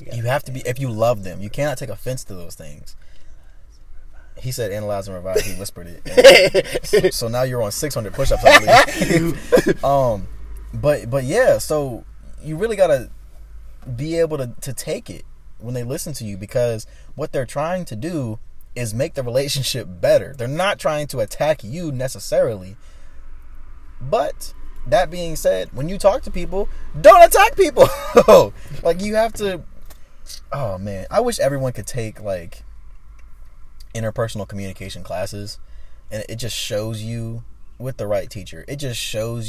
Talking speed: 165 wpm